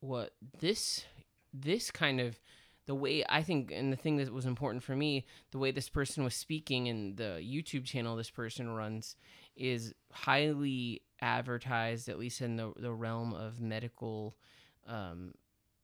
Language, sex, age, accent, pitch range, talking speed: English, male, 30-49, American, 115-135 Hz, 160 wpm